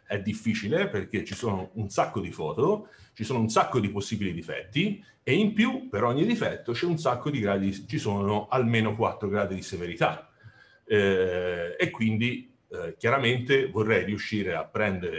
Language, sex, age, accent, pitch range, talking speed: Italian, male, 40-59, native, 100-120 Hz, 170 wpm